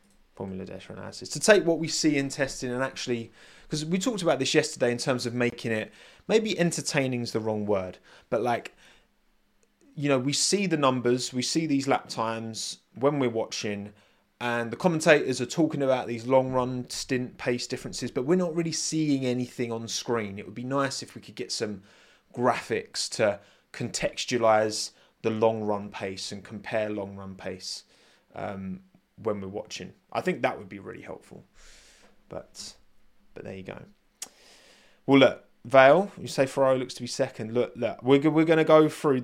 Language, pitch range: English, 105-135 Hz